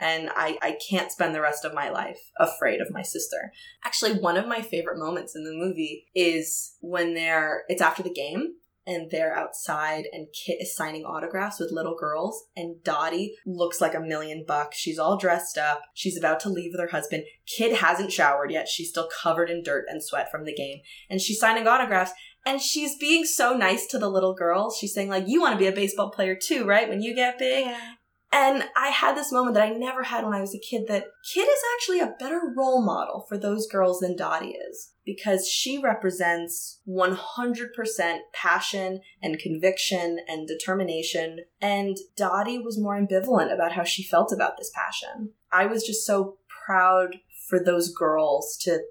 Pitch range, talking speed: 170-225 Hz, 195 wpm